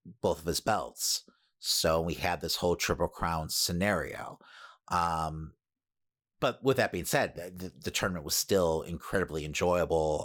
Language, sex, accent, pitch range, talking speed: English, male, American, 85-100 Hz, 145 wpm